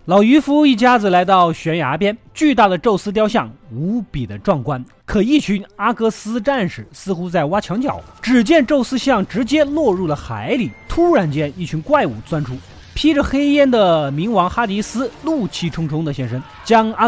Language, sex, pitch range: Chinese, male, 140-225 Hz